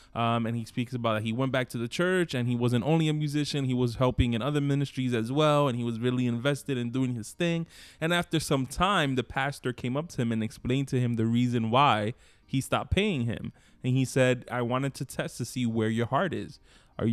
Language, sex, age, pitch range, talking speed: English, male, 20-39, 115-130 Hz, 245 wpm